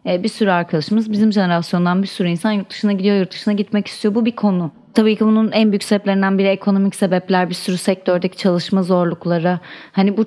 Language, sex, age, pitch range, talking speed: Turkish, female, 30-49, 175-220 Hz, 200 wpm